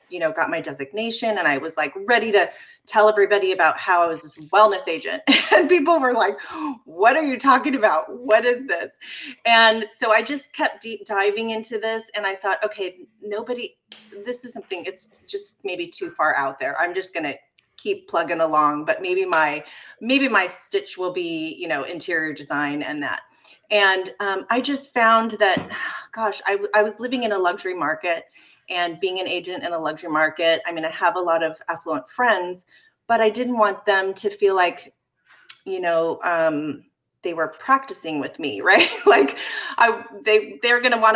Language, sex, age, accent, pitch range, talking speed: English, female, 30-49, American, 180-250 Hz, 190 wpm